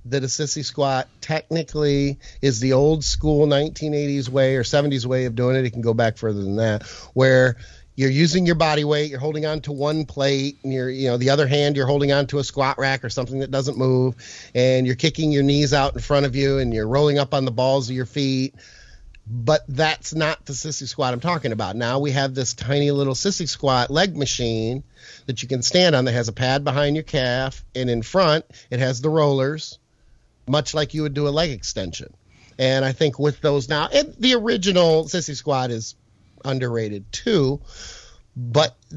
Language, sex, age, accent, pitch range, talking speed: English, male, 40-59, American, 125-150 Hz, 210 wpm